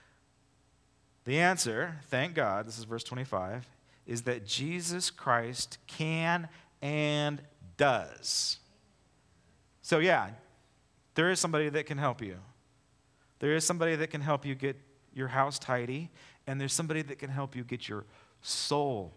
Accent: American